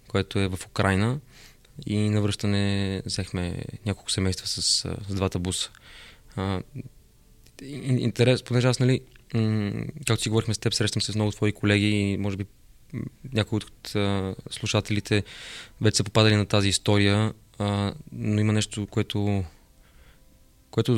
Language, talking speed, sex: Bulgarian, 135 wpm, male